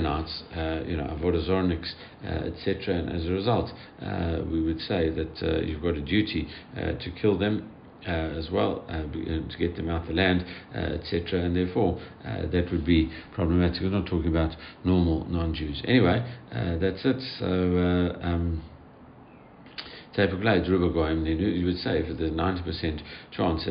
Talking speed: 165 wpm